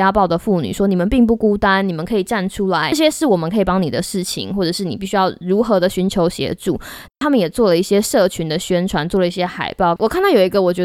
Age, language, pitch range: 20-39, Chinese, 185-255 Hz